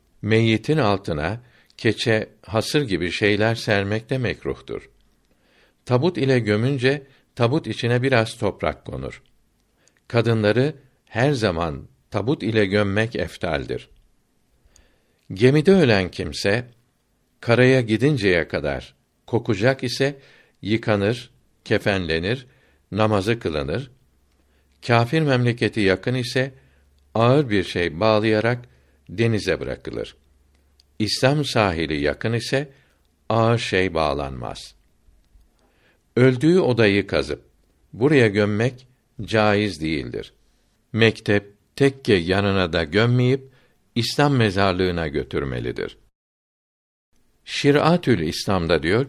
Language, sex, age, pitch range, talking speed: Turkish, male, 60-79, 90-125 Hz, 85 wpm